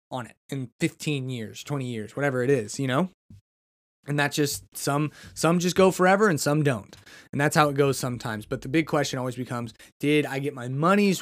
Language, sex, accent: English, male, American